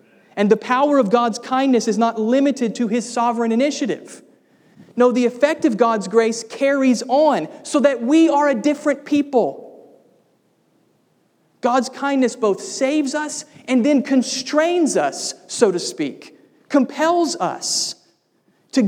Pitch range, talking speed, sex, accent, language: 200-265 Hz, 135 wpm, male, American, English